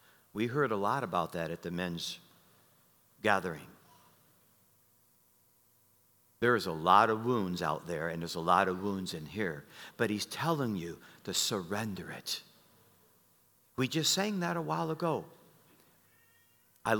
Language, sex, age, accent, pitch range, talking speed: English, male, 50-69, American, 100-125 Hz, 145 wpm